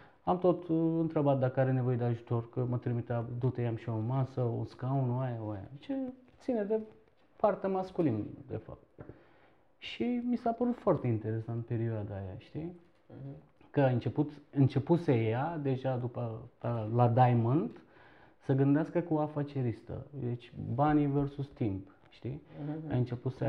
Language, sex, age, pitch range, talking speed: Romanian, male, 30-49, 125-175 Hz, 155 wpm